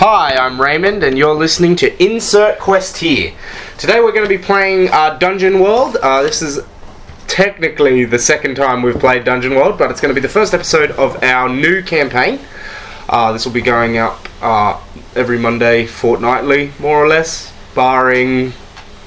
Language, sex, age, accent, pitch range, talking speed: English, male, 20-39, Australian, 115-155 Hz, 175 wpm